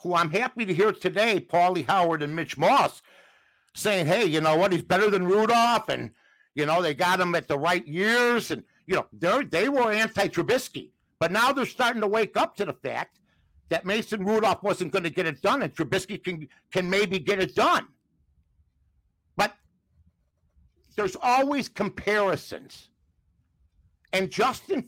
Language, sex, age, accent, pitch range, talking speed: English, male, 60-79, American, 155-215 Hz, 170 wpm